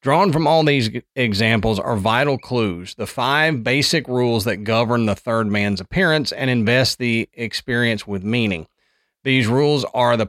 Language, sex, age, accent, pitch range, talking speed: English, male, 40-59, American, 115-145 Hz, 165 wpm